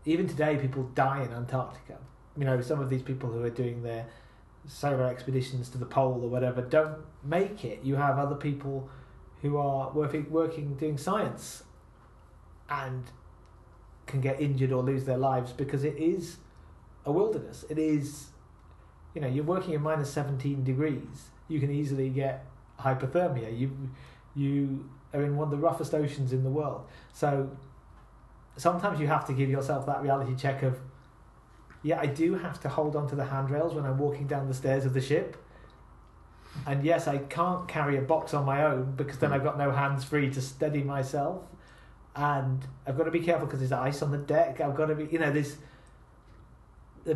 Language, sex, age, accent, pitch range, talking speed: English, male, 30-49, British, 130-150 Hz, 185 wpm